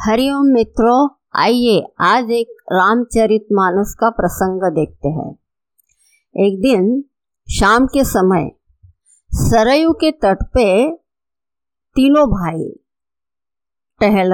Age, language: 50-69, Hindi